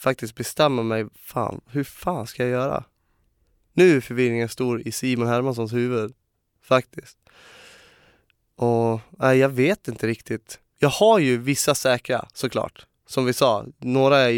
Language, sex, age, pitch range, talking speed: Swedish, male, 20-39, 115-130 Hz, 140 wpm